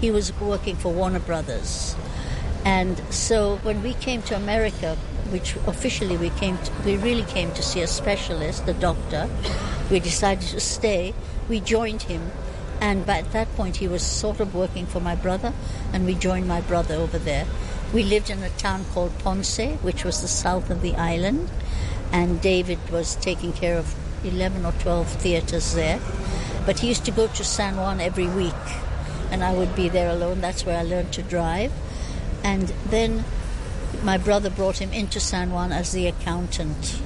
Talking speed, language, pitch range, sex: 180 wpm, English, 170-205 Hz, female